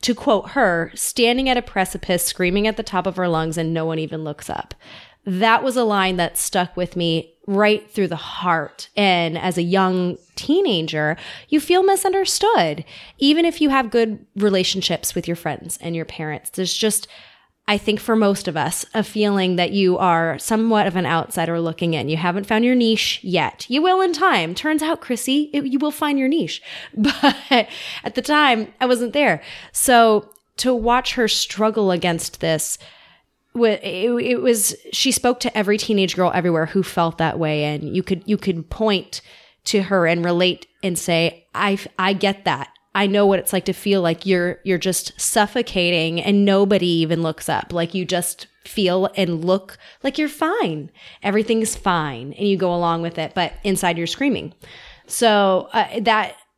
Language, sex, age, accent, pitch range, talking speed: English, female, 20-39, American, 175-230 Hz, 185 wpm